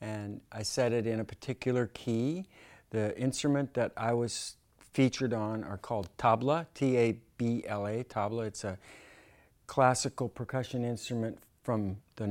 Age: 50-69